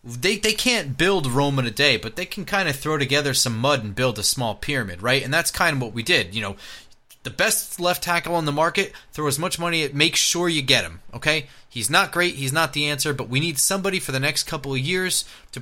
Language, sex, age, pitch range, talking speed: English, male, 30-49, 120-155 Hz, 260 wpm